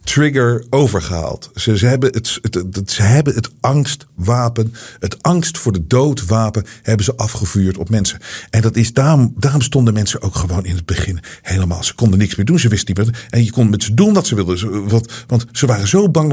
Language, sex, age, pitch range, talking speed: Dutch, male, 50-69, 110-140 Hz, 215 wpm